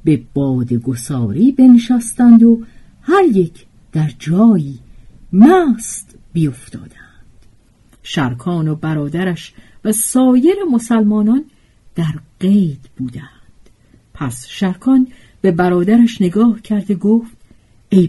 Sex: female